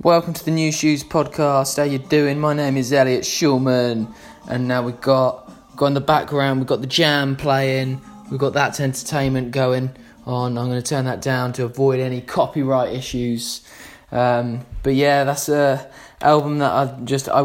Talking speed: 185 wpm